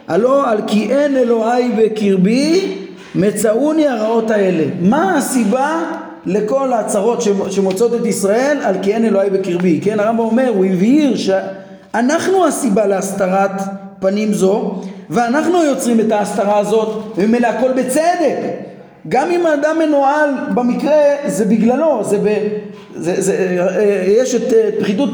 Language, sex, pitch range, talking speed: Hebrew, male, 210-260 Hz, 125 wpm